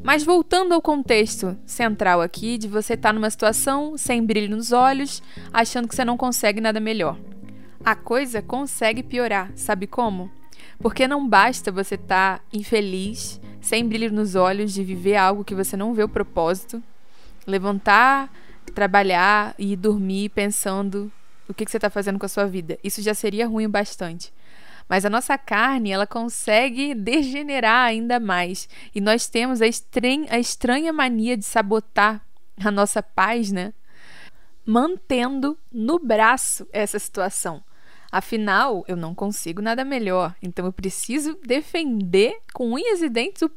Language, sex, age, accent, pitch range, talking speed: Portuguese, female, 20-39, Brazilian, 195-240 Hz, 150 wpm